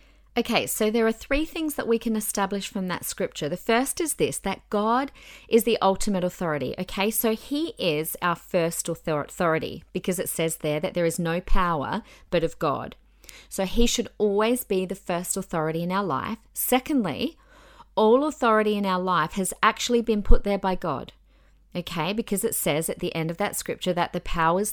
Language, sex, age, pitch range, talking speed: English, female, 40-59, 170-240 Hz, 190 wpm